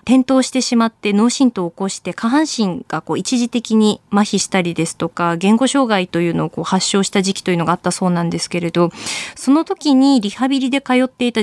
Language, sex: Japanese, female